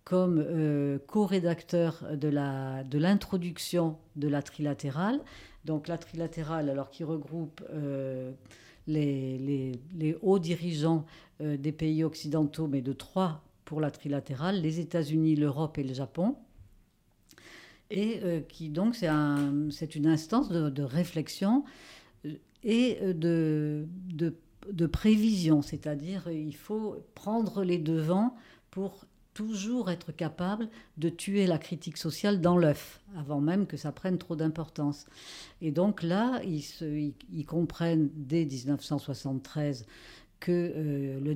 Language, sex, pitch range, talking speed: French, female, 150-180 Hz, 130 wpm